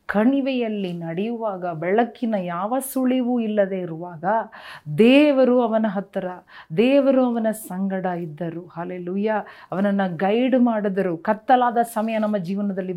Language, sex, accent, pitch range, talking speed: Kannada, female, native, 185-230 Hz, 105 wpm